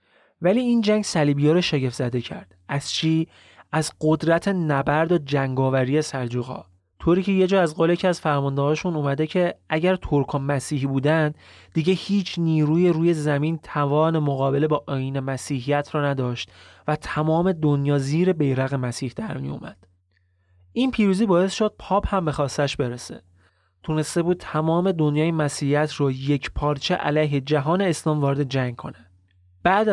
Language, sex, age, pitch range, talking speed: Persian, male, 30-49, 135-170 Hz, 145 wpm